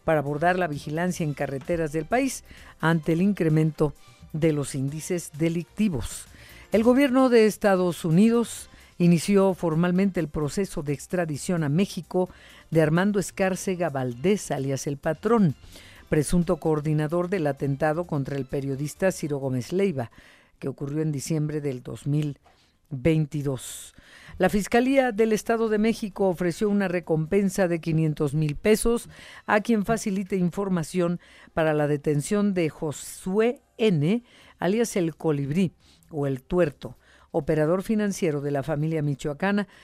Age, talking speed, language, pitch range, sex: 50-69, 130 wpm, Spanish, 150-195 Hz, female